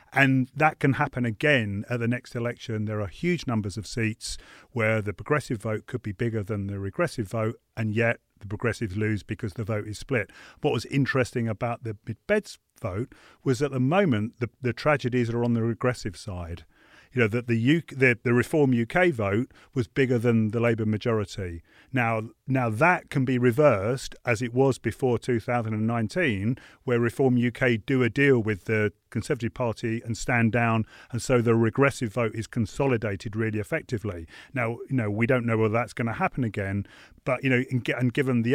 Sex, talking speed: male, 190 wpm